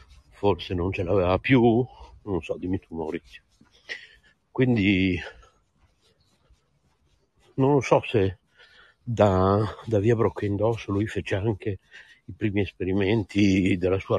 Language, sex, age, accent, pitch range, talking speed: Italian, male, 60-79, native, 95-110 Hz, 115 wpm